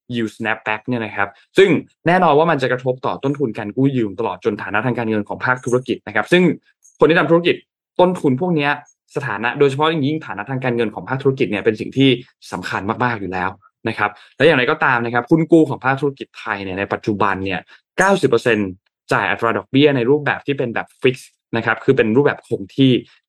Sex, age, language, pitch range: male, 20-39, Thai, 110-145 Hz